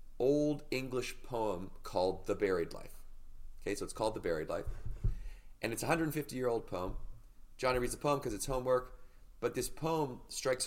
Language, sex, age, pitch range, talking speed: English, male, 30-49, 95-125 Hz, 170 wpm